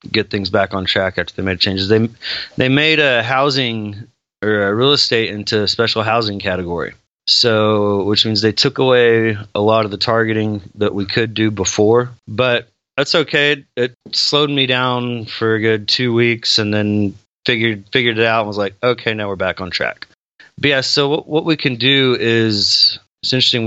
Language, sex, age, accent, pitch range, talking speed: English, male, 30-49, American, 105-125 Hz, 195 wpm